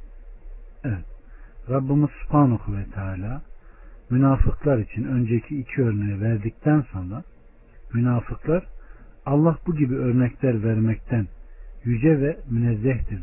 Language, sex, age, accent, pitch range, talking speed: Turkish, male, 60-79, native, 100-135 Hz, 95 wpm